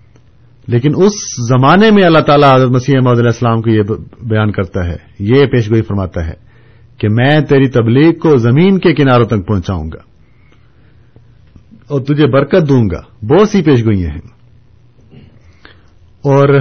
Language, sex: Urdu, male